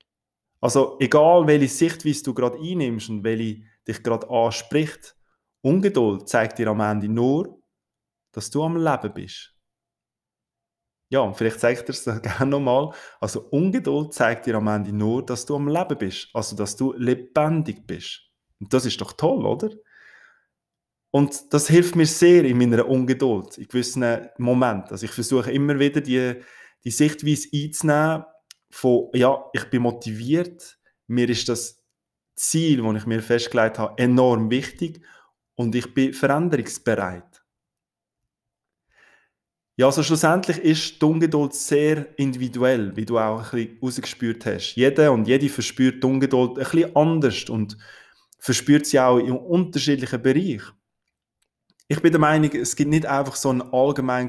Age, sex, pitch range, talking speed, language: 20-39, male, 115-150 Hz, 150 wpm, German